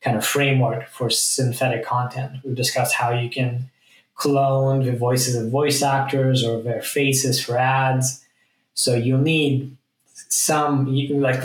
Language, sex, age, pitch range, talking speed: English, male, 10-29, 120-135 Hz, 145 wpm